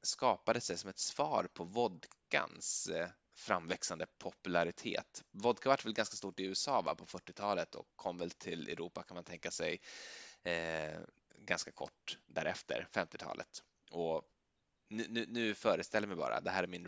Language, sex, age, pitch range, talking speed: Swedish, male, 20-39, 85-105 Hz, 160 wpm